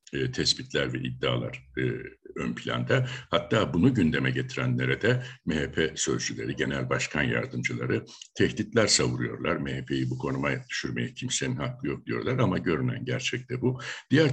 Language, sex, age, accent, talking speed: Turkish, male, 60-79, native, 140 wpm